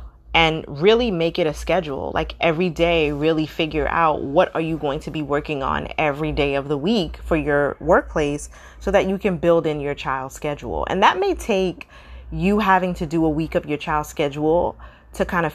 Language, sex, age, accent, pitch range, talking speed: English, female, 30-49, American, 140-165 Hz, 210 wpm